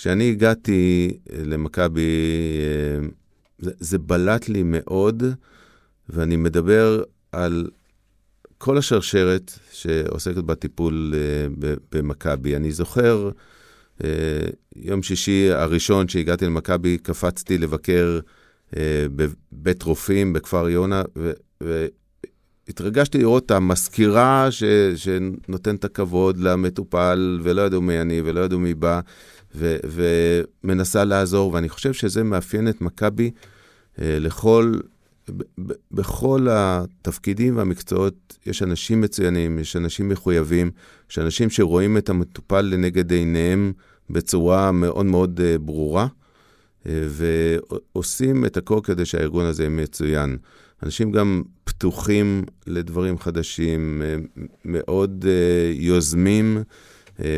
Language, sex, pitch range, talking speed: Hebrew, male, 85-100 Hz, 100 wpm